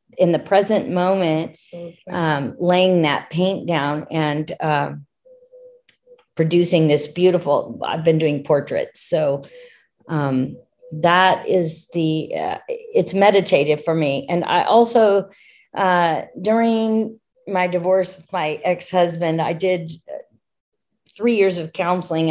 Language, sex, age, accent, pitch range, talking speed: English, female, 40-59, American, 160-195 Hz, 120 wpm